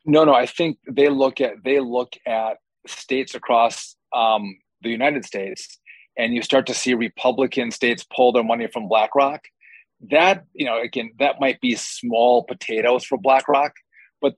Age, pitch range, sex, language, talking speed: 30-49, 120-170 Hz, male, English, 165 wpm